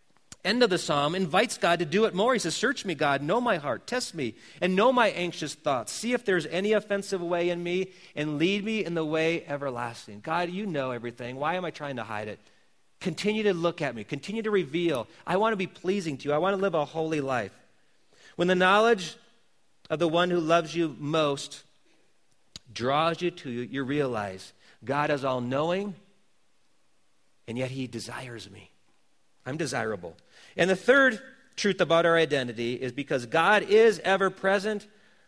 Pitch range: 140-185 Hz